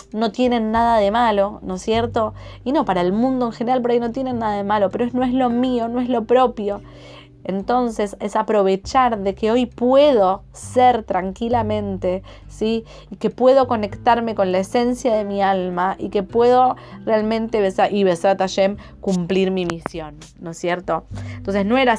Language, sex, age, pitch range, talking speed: Spanish, female, 20-39, 190-235 Hz, 190 wpm